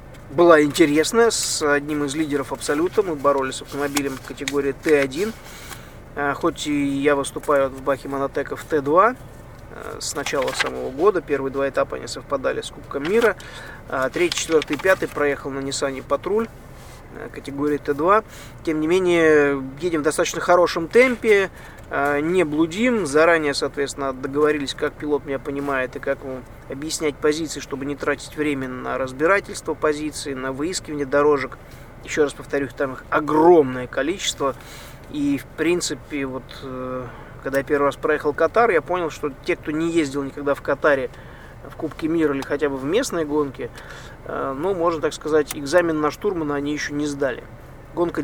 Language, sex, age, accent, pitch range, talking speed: Russian, male, 20-39, native, 140-160 Hz, 155 wpm